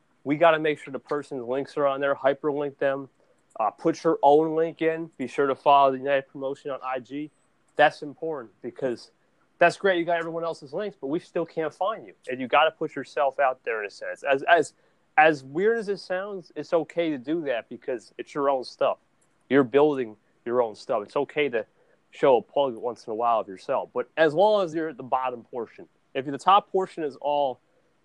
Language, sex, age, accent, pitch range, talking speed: English, male, 30-49, American, 135-170 Hz, 220 wpm